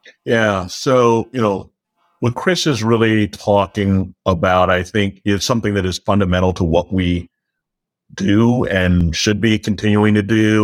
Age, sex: 50-69, male